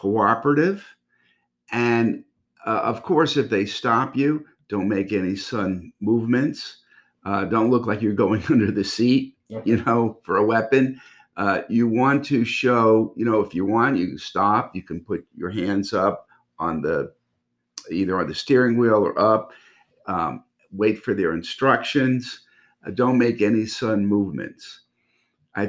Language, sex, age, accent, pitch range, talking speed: English, male, 50-69, American, 105-135 Hz, 160 wpm